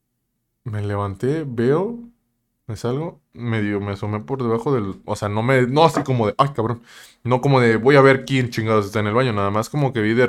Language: Spanish